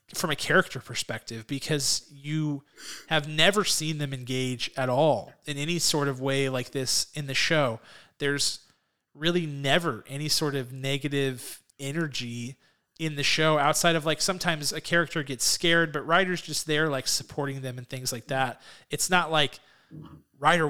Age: 30-49